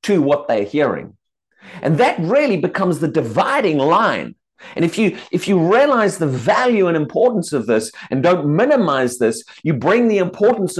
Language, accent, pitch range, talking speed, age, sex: English, British, 165-220 Hz, 170 wpm, 50-69, male